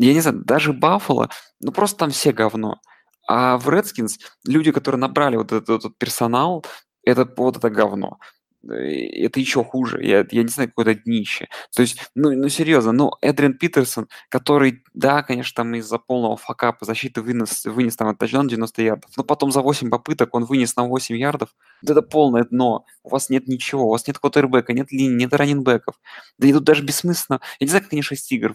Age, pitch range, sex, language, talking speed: 20-39, 115-140 Hz, male, Russian, 200 wpm